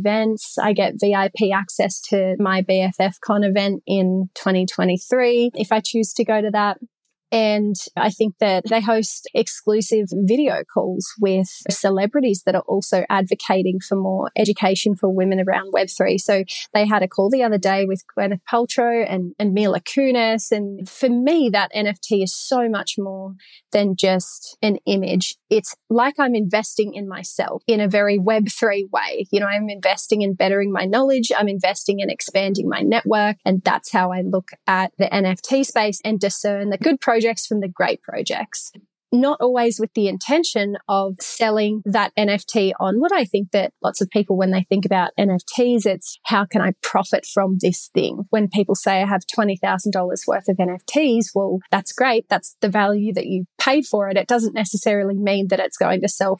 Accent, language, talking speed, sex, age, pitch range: Australian, English, 180 wpm, female, 20-39, 190-220 Hz